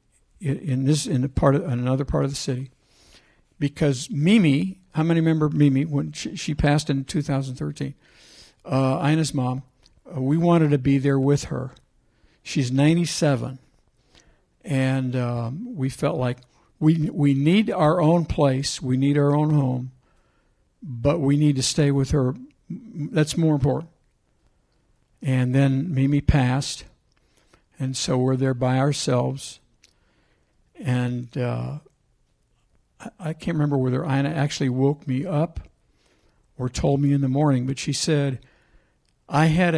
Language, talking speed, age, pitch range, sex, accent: English, 145 wpm, 60-79, 130-150 Hz, male, American